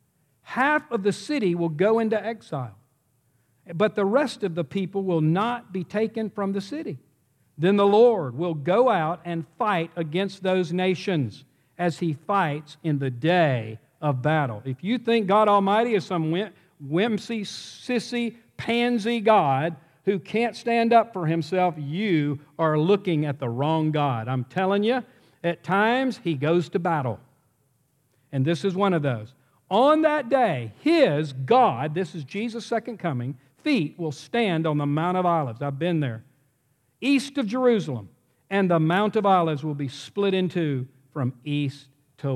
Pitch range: 135-200 Hz